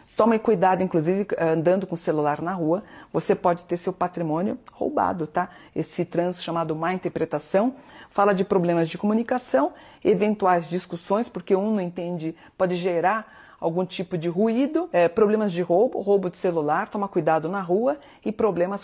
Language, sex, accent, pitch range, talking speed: Portuguese, female, Brazilian, 170-210 Hz, 160 wpm